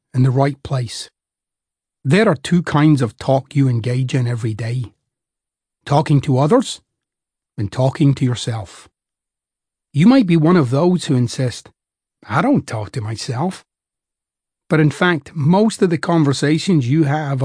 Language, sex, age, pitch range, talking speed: English, male, 40-59, 130-195 Hz, 150 wpm